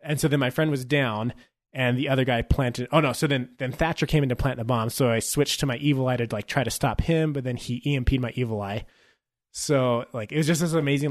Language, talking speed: English, 275 wpm